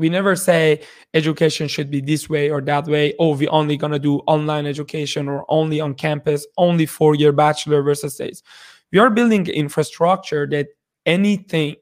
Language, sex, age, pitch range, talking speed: English, male, 20-39, 150-175 Hz, 175 wpm